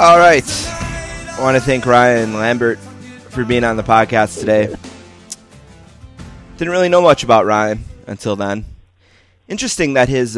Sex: male